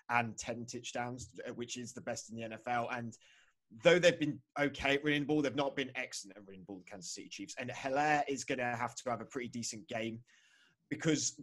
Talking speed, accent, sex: 220 wpm, British, male